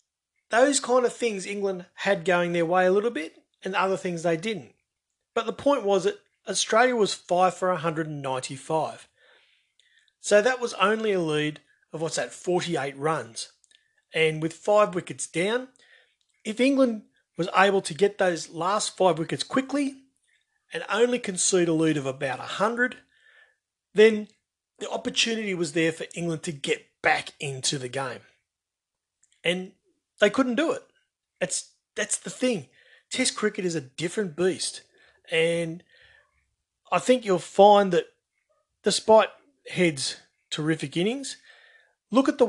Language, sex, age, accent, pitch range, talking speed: English, male, 30-49, Australian, 165-235 Hz, 145 wpm